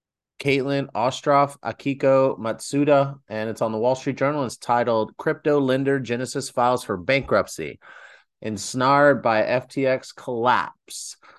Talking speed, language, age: 120 wpm, English, 30-49